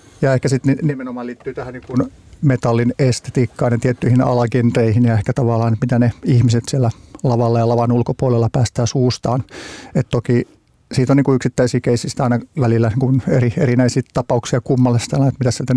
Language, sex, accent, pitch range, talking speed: Finnish, male, native, 120-135 Hz, 165 wpm